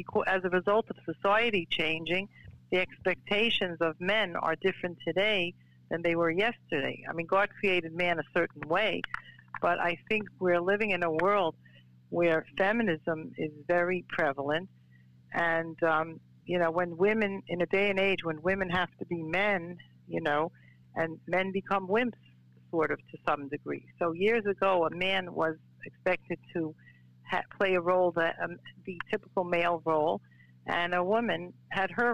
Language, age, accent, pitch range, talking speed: English, 60-79, American, 160-195 Hz, 165 wpm